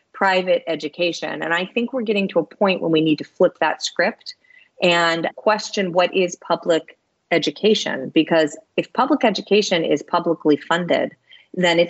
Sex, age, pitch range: female, 30-49, 155-195 Hz